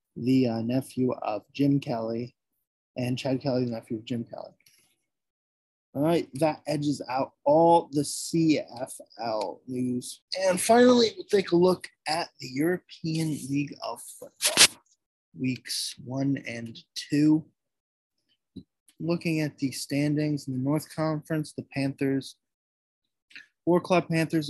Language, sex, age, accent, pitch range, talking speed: English, male, 20-39, American, 125-150 Hz, 125 wpm